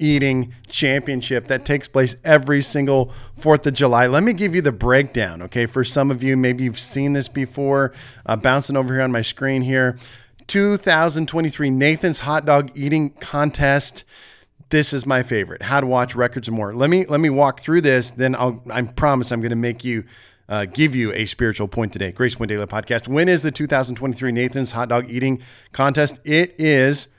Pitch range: 120-145 Hz